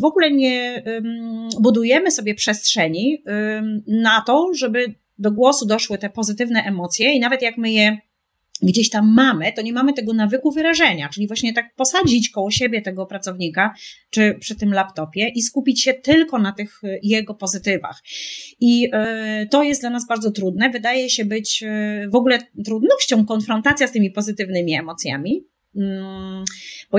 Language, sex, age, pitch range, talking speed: Polish, female, 30-49, 205-260 Hz, 150 wpm